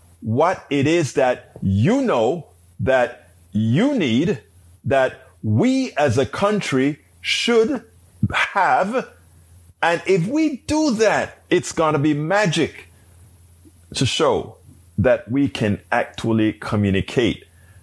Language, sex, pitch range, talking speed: English, male, 105-165 Hz, 110 wpm